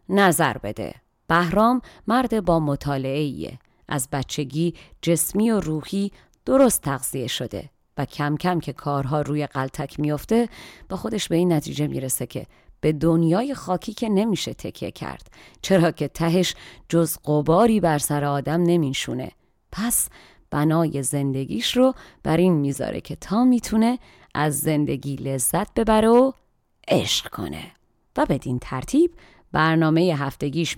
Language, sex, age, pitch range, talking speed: Persian, female, 30-49, 145-195 Hz, 130 wpm